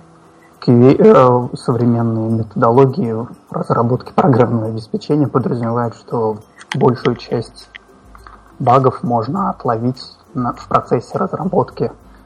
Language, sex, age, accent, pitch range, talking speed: Russian, male, 30-49, native, 110-140 Hz, 75 wpm